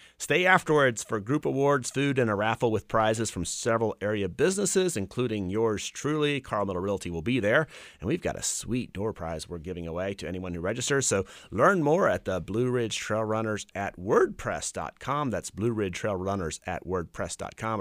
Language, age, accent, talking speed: English, 30-49, American, 190 wpm